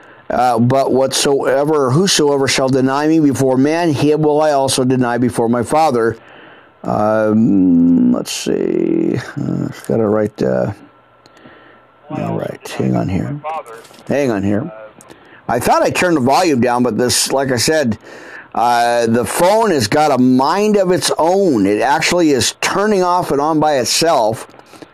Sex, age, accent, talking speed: male, 50-69, American, 160 wpm